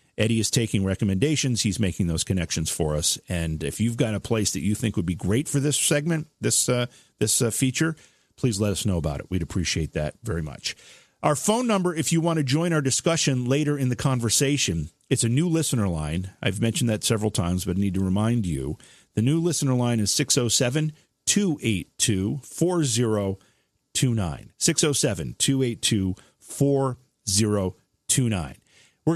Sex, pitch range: male, 100-135 Hz